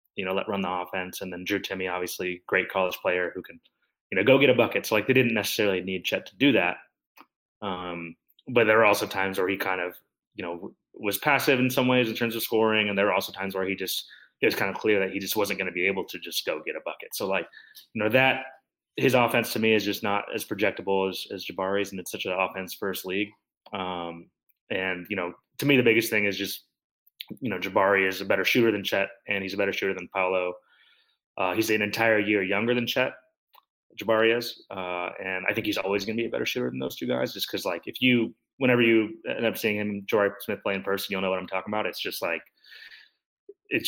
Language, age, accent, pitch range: English, 20-39, American, 95-115 Hz